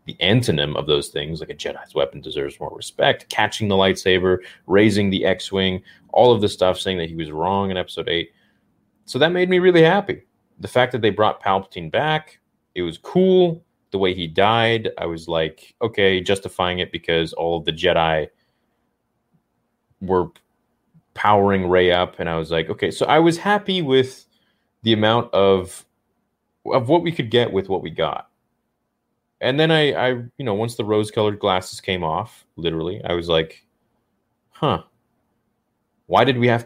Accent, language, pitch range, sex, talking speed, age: American, English, 90-125 Hz, male, 180 wpm, 30-49